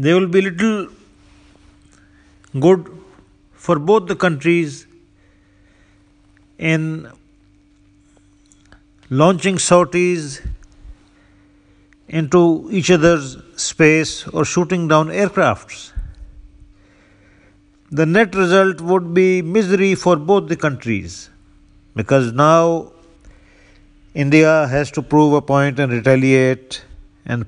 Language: English